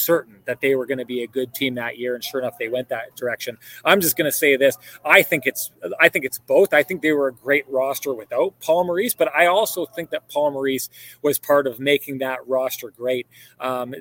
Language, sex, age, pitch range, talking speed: English, male, 30-49, 130-165 Hz, 245 wpm